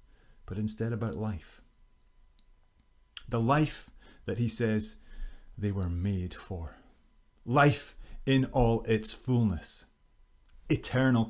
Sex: male